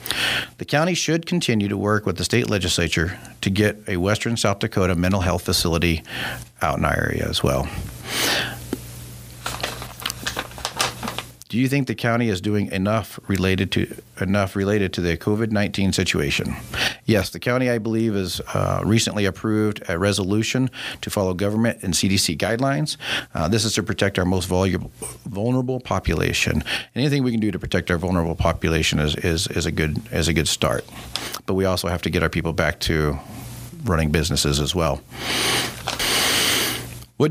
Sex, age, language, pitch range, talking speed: male, 40-59, English, 85-115 Hz, 165 wpm